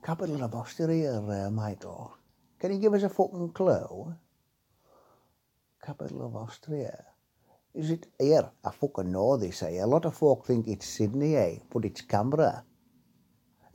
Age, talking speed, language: 60-79, 155 wpm, English